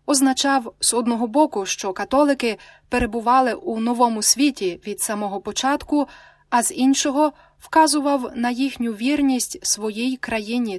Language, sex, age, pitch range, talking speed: Ukrainian, female, 20-39, 205-270 Hz, 130 wpm